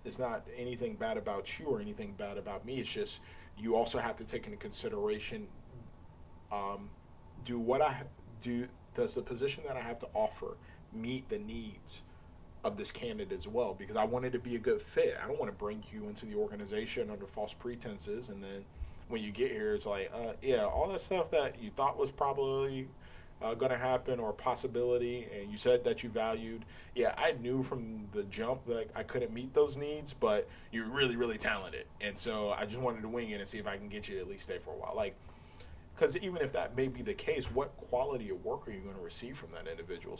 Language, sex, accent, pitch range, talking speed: English, male, American, 100-135 Hz, 225 wpm